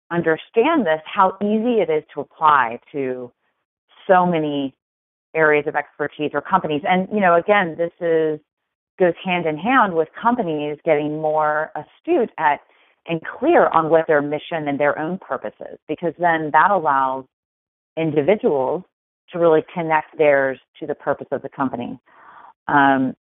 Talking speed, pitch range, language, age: 150 wpm, 140-165 Hz, English, 30-49